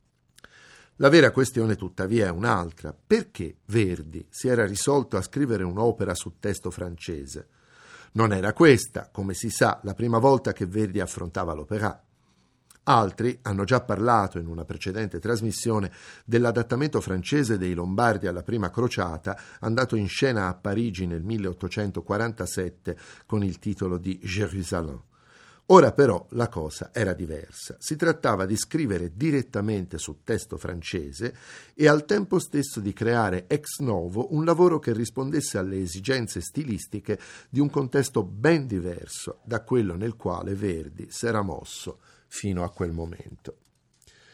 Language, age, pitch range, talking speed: Italian, 50-69, 90-120 Hz, 140 wpm